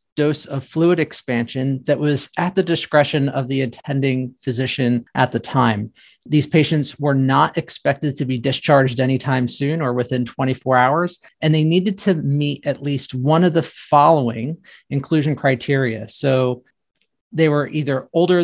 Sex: male